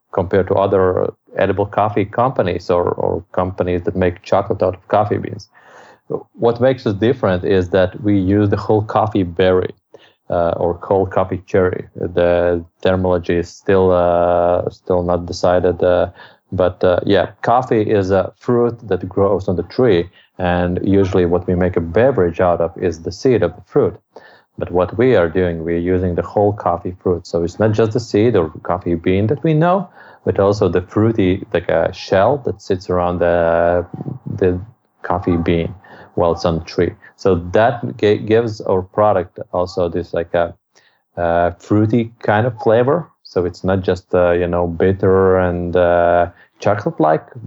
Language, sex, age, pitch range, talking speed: English, male, 30-49, 90-105 Hz, 175 wpm